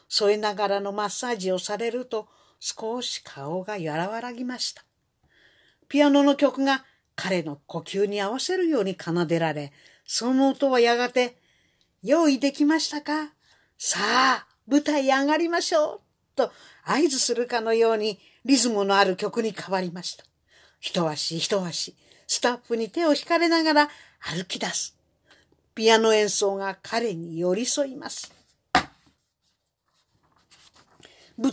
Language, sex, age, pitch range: Japanese, female, 50-69, 200-290 Hz